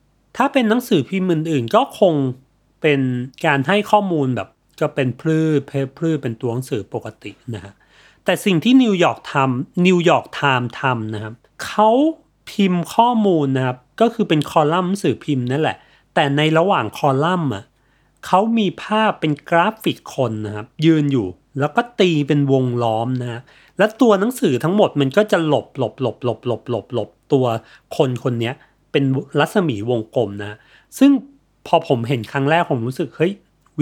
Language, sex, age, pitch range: Thai, male, 30-49, 130-190 Hz